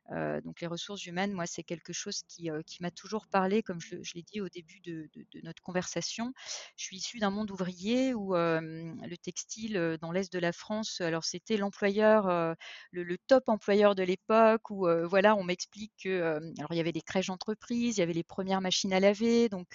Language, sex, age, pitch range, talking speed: French, female, 30-49, 170-205 Hz, 230 wpm